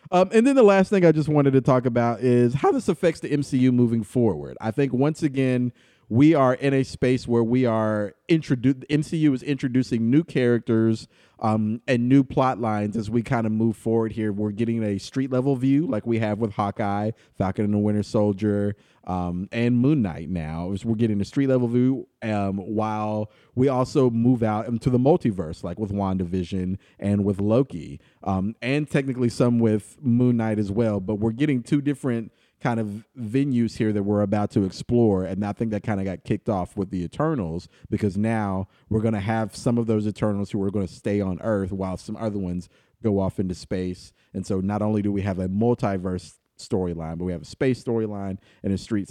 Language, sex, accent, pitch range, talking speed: English, male, American, 100-125 Hz, 210 wpm